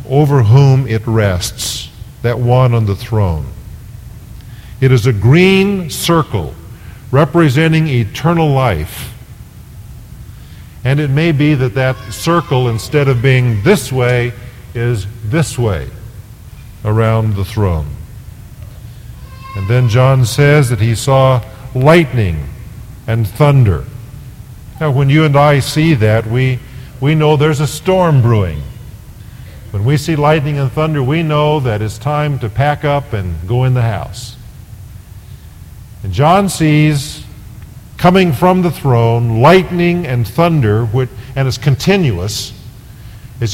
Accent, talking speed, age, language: American, 125 wpm, 50-69, English